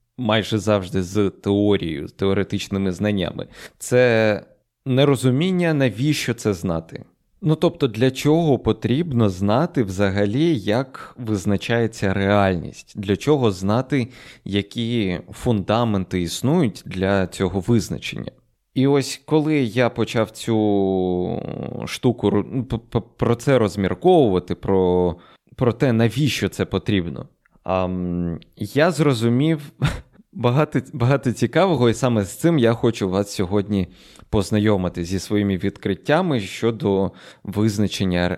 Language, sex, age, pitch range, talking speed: Ukrainian, male, 20-39, 100-130 Hz, 105 wpm